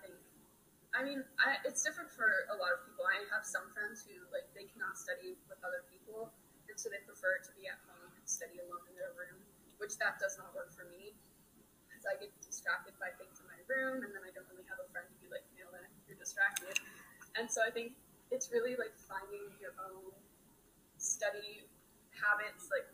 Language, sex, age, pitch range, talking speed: English, female, 10-29, 195-270 Hz, 205 wpm